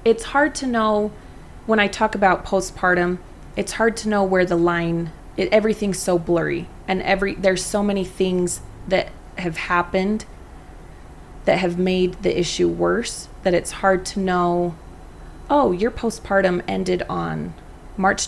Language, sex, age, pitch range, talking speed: English, female, 20-39, 160-190 Hz, 150 wpm